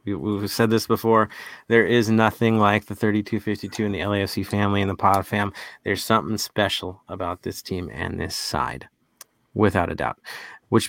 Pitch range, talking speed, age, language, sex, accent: 105-135 Hz, 170 wpm, 30-49, English, male, American